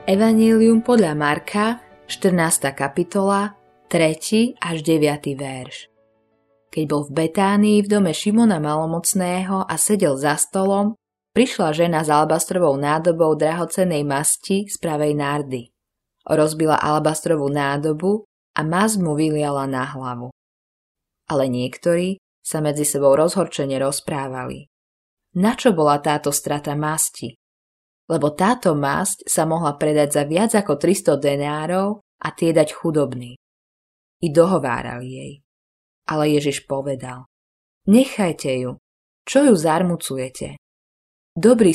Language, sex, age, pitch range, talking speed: Slovak, female, 20-39, 135-180 Hz, 115 wpm